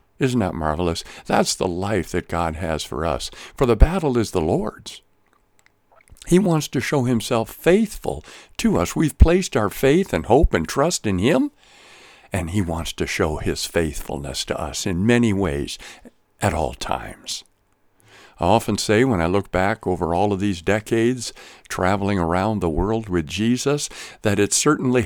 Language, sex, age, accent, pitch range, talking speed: English, male, 60-79, American, 95-140 Hz, 170 wpm